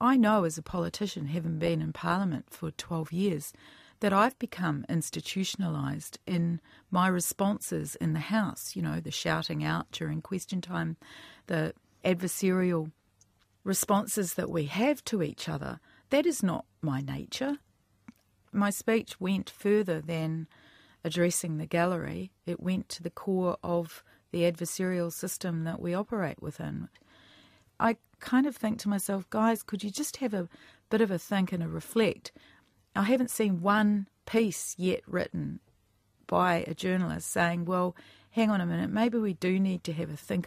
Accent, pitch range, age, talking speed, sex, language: Australian, 155-195 Hz, 40-59, 160 wpm, female, English